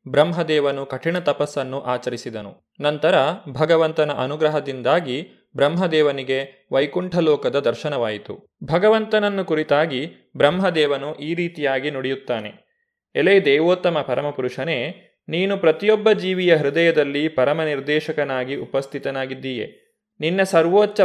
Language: Kannada